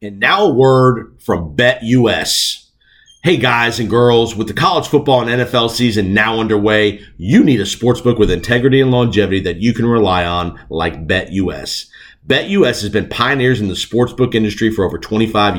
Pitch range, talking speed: 105-125 Hz, 175 wpm